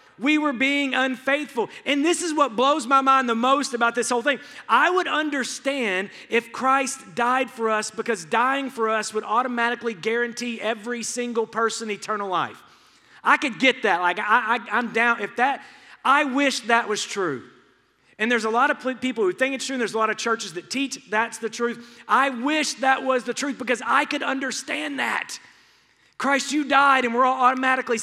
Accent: American